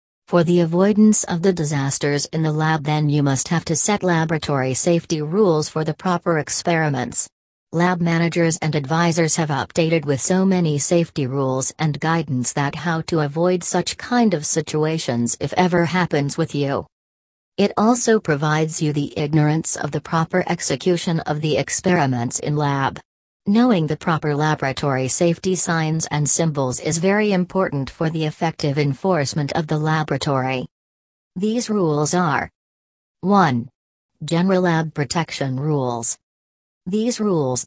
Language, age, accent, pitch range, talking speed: English, 40-59, American, 145-175 Hz, 145 wpm